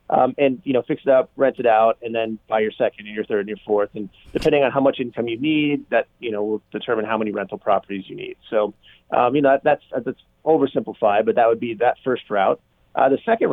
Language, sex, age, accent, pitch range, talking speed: English, male, 30-49, American, 110-140 Hz, 255 wpm